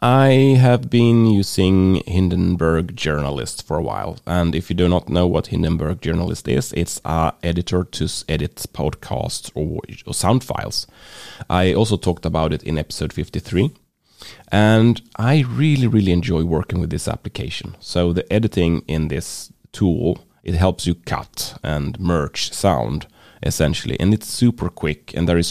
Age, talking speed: 30-49, 160 wpm